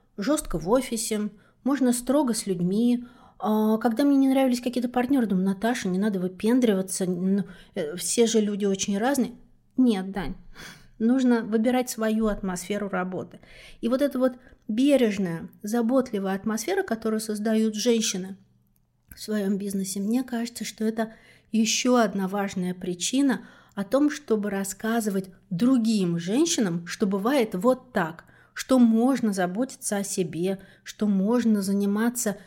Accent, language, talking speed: native, Russian, 130 wpm